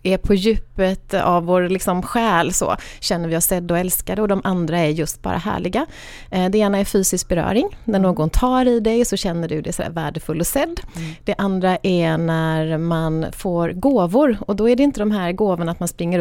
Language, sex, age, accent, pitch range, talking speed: Swedish, female, 30-49, native, 170-205 Hz, 210 wpm